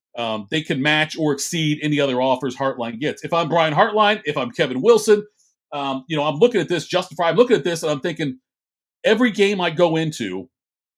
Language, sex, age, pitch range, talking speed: English, male, 40-59, 145-215 Hz, 215 wpm